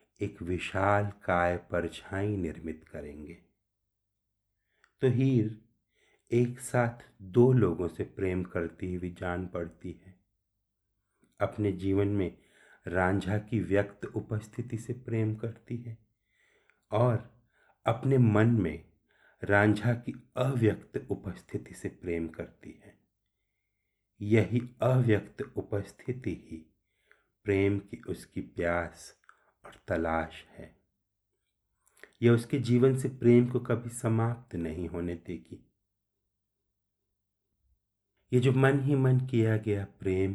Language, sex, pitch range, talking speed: Hindi, male, 90-115 Hz, 105 wpm